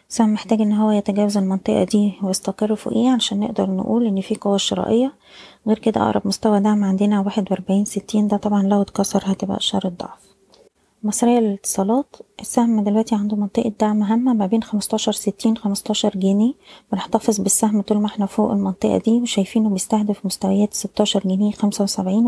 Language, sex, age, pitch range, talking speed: Arabic, female, 20-39, 200-220 Hz, 165 wpm